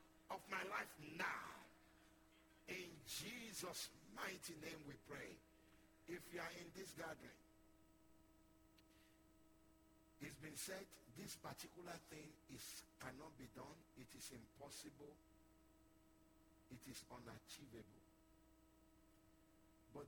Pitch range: 105-165 Hz